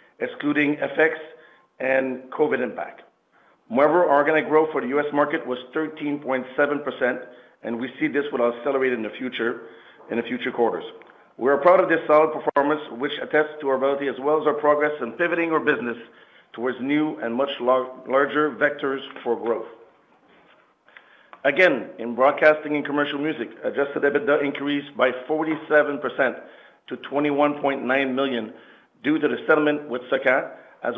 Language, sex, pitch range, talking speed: English, male, 130-150 Hz, 160 wpm